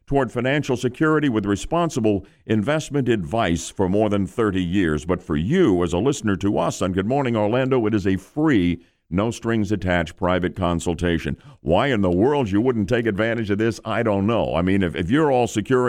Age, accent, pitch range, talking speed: 50-69, American, 85-115 Hz, 200 wpm